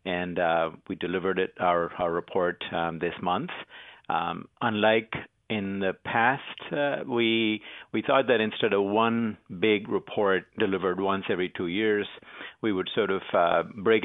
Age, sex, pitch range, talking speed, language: 50-69, male, 95-120 Hz, 160 wpm, English